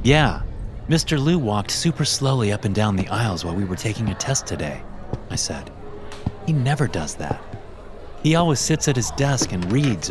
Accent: American